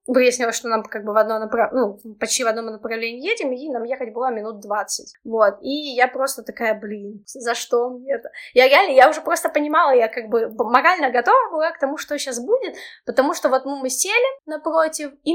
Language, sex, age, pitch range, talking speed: Russian, female, 20-39, 235-295 Hz, 215 wpm